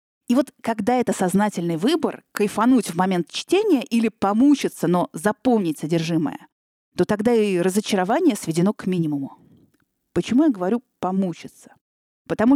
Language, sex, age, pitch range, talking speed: Russian, female, 30-49, 180-245 Hz, 135 wpm